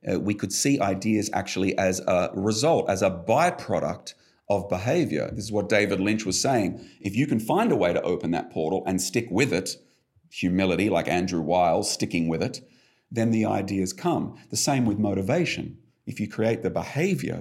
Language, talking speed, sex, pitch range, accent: German, 190 wpm, male, 95-125 Hz, Australian